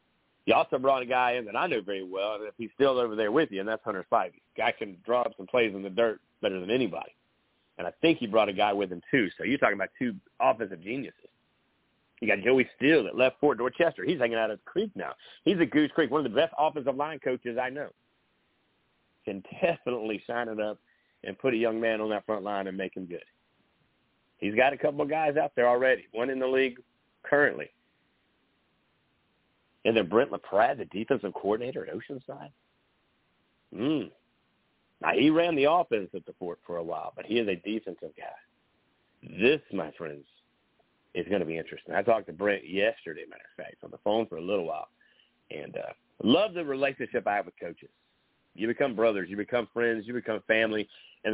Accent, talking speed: American, 210 wpm